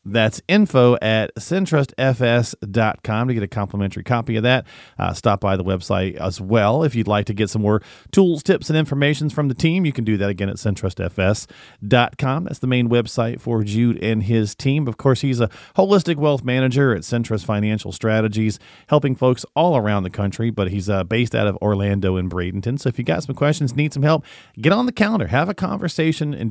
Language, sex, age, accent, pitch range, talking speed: English, male, 40-59, American, 105-145 Hz, 205 wpm